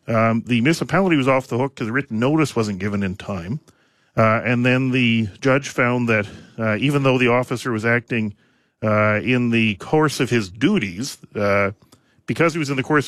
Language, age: English, 40-59